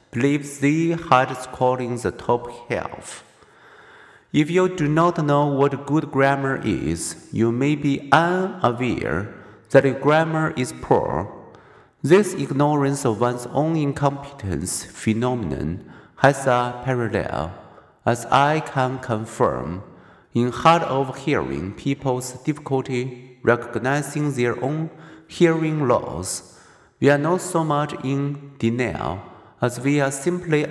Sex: male